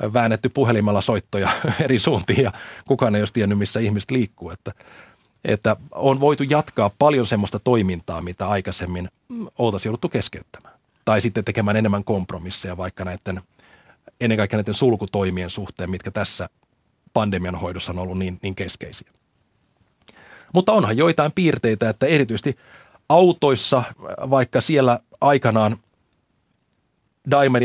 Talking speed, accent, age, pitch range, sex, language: 125 wpm, native, 30-49, 105-130 Hz, male, Finnish